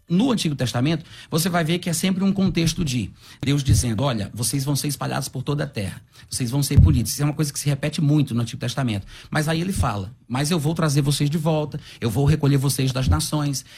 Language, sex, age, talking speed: Portuguese, male, 30-49, 240 wpm